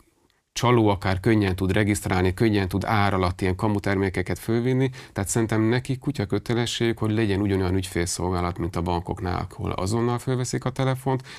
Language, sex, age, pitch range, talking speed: Hungarian, male, 40-59, 90-105 Hz, 170 wpm